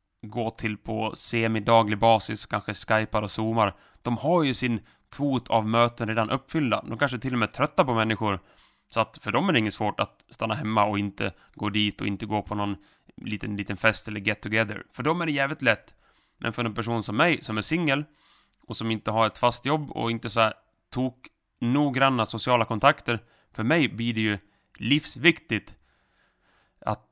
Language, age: Swedish, 30-49